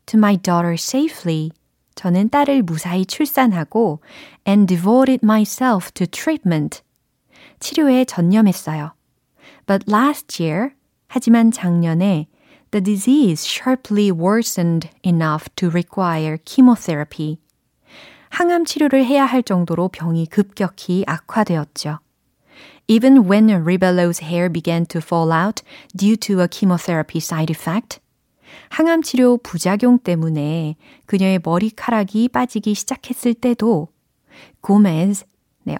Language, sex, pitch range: Korean, female, 165-230 Hz